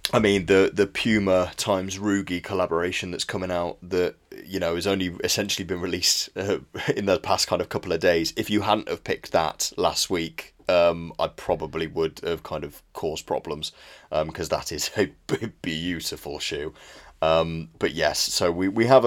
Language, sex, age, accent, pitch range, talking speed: English, male, 30-49, British, 90-110 Hz, 185 wpm